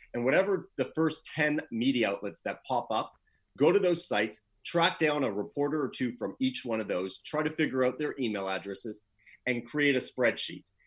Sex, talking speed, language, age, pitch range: male, 200 wpm, English, 30-49, 115-140 Hz